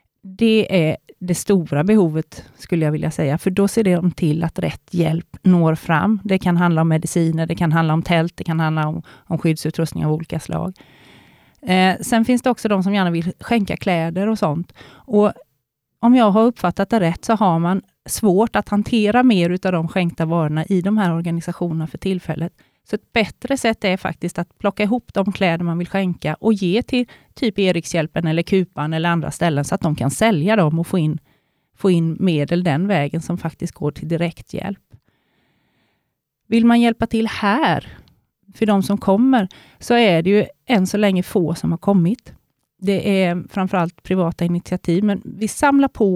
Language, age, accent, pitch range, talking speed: Swedish, 30-49, native, 165-205 Hz, 190 wpm